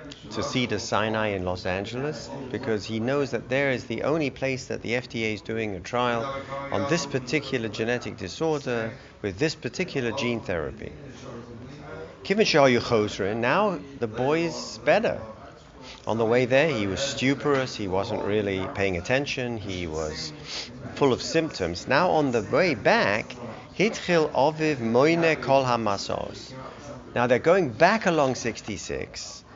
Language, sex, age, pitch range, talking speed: English, male, 40-59, 115-160 Hz, 145 wpm